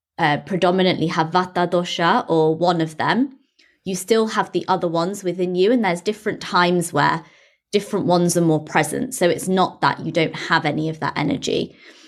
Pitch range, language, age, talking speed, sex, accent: 160-200 Hz, English, 20-39, 190 wpm, female, British